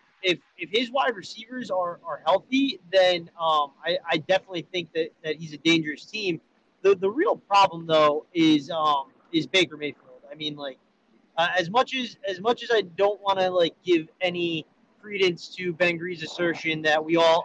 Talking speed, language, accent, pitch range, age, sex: 190 wpm, English, American, 155-195 Hz, 30-49, male